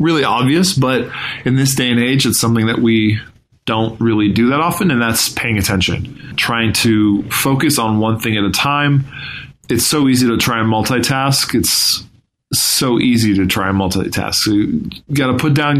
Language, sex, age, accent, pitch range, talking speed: English, male, 20-39, American, 105-130 Hz, 190 wpm